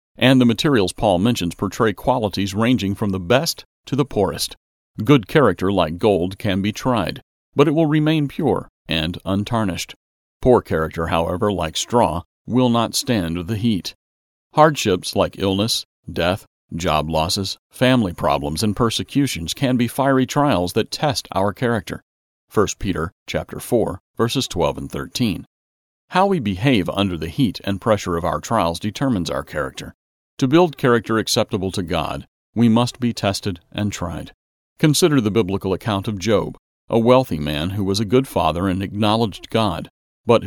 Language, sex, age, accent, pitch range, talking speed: English, male, 40-59, American, 85-120 Hz, 160 wpm